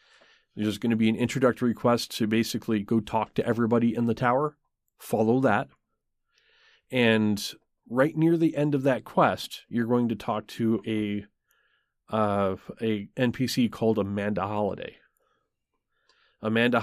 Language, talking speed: English, 140 wpm